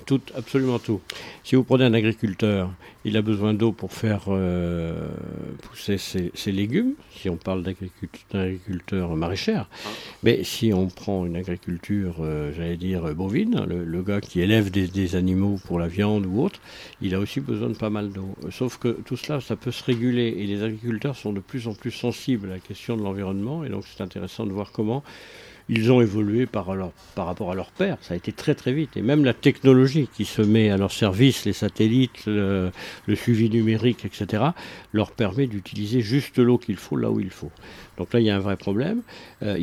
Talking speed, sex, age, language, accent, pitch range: 205 wpm, male, 60-79, French, French, 95-125 Hz